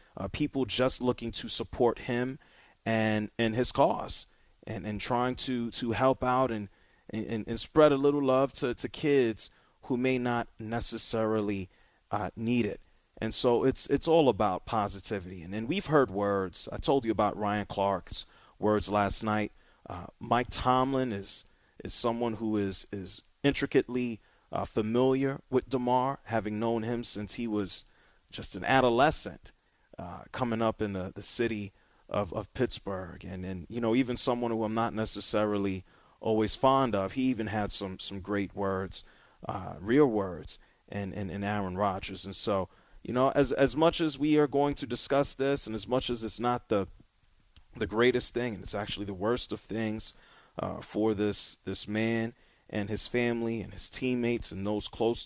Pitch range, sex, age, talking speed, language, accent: 100-125 Hz, male, 30-49, 175 wpm, English, American